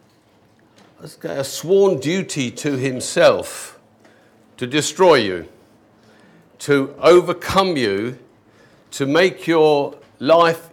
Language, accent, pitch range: English, British, 135-170 Hz